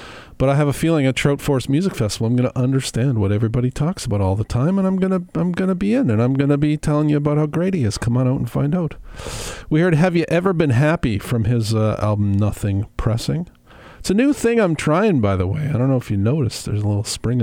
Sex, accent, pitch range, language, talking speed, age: male, American, 115-155 Hz, English, 270 wpm, 50-69